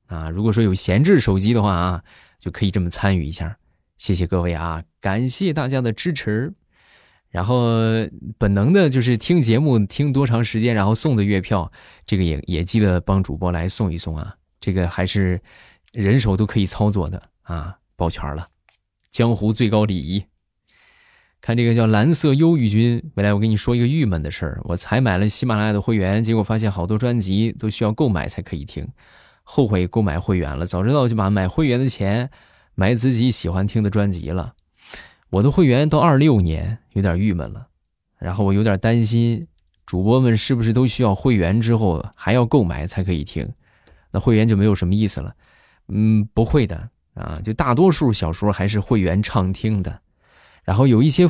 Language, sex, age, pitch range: Chinese, male, 20-39, 90-115 Hz